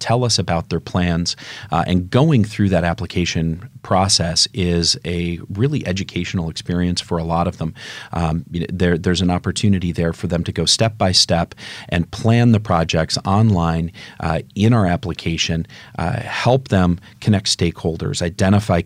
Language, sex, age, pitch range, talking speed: English, male, 40-59, 85-100 Hz, 150 wpm